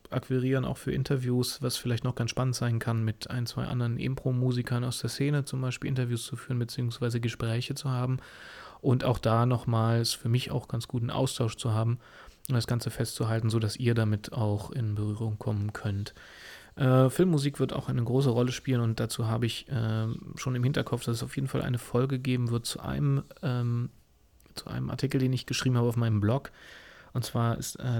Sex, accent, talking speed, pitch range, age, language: male, German, 200 wpm, 115-125 Hz, 30-49, German